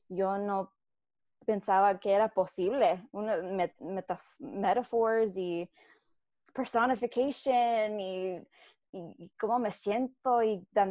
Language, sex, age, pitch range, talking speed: Spanish, female, 20-39, 185-225 Hz, 105 wpm